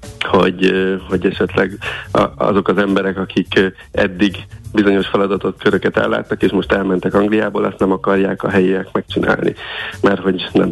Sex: male